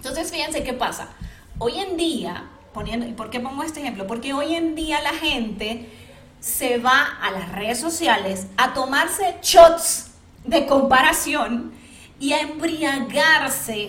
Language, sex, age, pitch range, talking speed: Spanish, female, 30-49, 225-285 Hz, 140 wpm